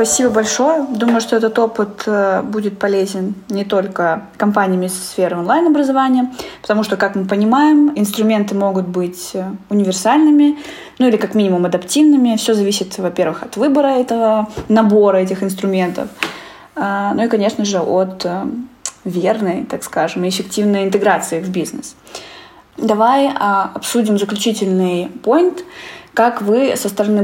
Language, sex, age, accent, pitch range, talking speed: Russian, female, 20-39, native, 190-230 Hz, 125 wpm